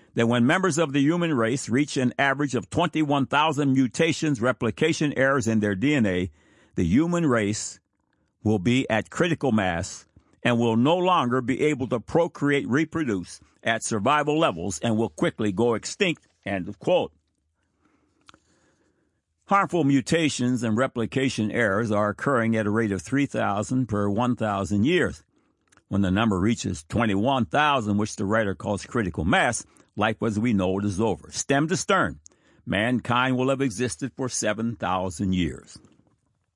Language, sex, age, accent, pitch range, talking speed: English, male, 60-79, American, 105-140 Hz, 145 wpm